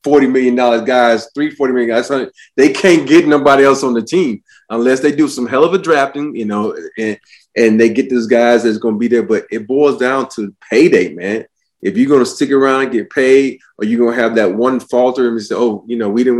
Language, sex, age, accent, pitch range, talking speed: English, male, 30-49, American, 110-135 Hz, 250 wpm